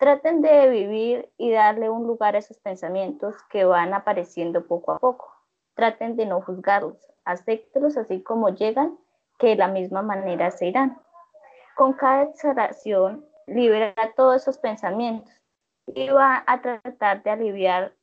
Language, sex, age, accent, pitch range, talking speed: Italian, female, 20-39, American, 200-265 Hz, 145 wpm